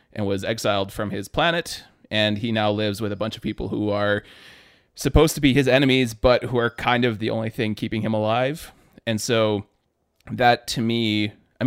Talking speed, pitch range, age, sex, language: 200 wpm, 105-120 Hz, 30-49, male, English